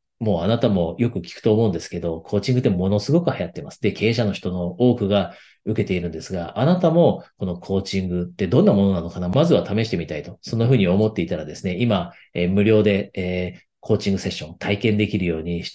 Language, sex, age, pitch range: Japanese, male, 40-59, 90-115 Hz